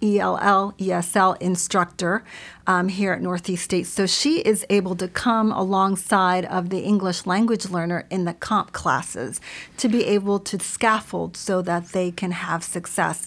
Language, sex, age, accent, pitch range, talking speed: English, female, 40-59, American, 180-210 Hz, 160 wpm